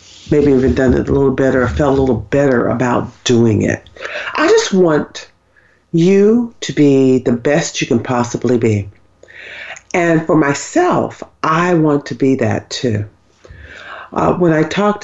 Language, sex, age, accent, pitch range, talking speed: English, female, 50-69, American, 125-190 Hz, 160 wpm